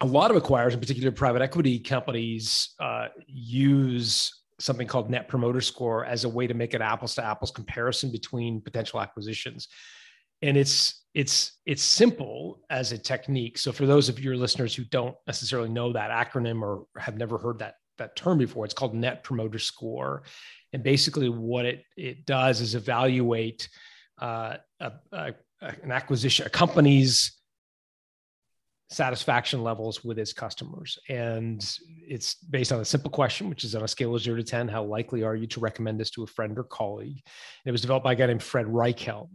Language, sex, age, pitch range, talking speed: English, male, 30-49, 115-140 Hz, 185 wpm